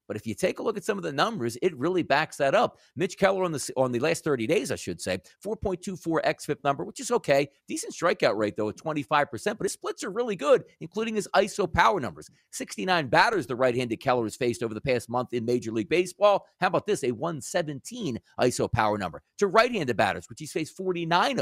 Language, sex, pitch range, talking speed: English, male, 145-220 Hz, 225 wpm